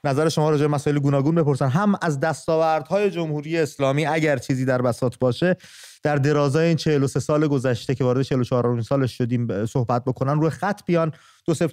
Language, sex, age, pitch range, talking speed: English, male, 30-49, 135-175 Hz, 195 wpm